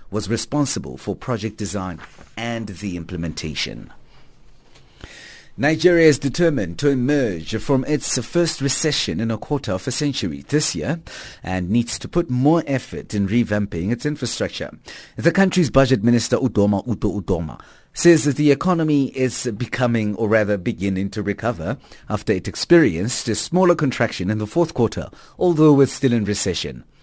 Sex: male